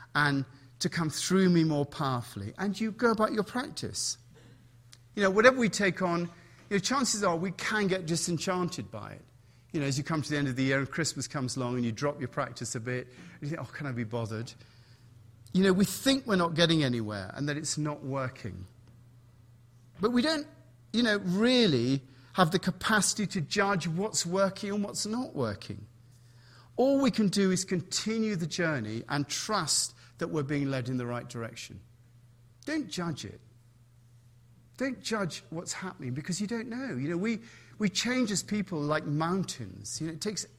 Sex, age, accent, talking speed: male, 40-59, British, 190 wpm